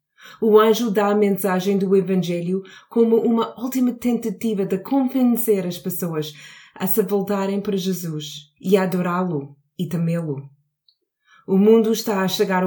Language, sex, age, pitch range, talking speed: Portuguese, female, 20-39, 155-210 Hz, 140 wpm